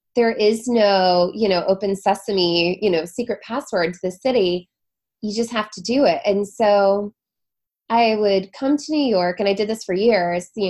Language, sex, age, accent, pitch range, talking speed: English, female, 20-39, American, 185-220 Hz, 195 wpm